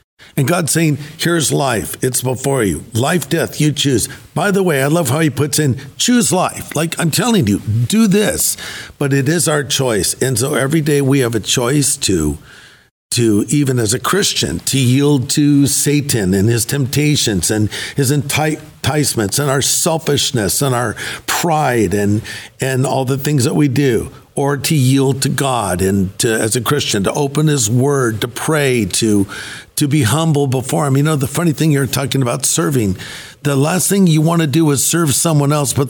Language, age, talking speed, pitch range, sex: English, 50-69, 195 wpm, 125-155 Hz, male